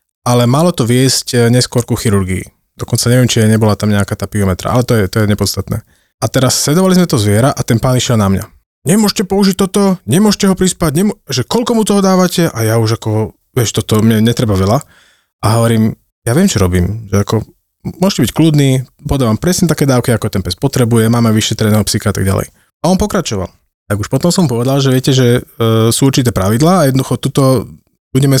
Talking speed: 205 wpm